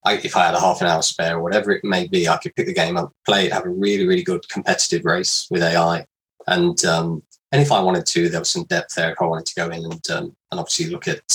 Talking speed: 290 wpm